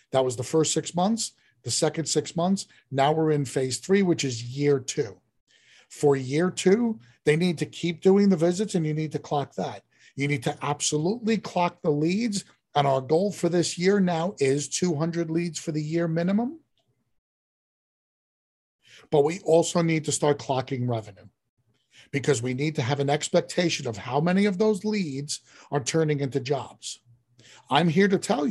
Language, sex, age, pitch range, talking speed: English, male, 50-69, 135-175 Hz, 180 wpm